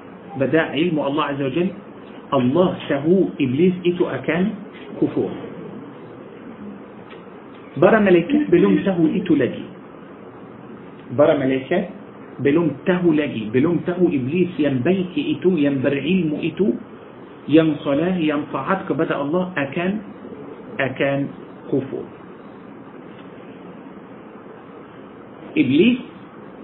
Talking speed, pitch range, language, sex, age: 90 wpm, 155-200 Hz, Malay, male, 50-69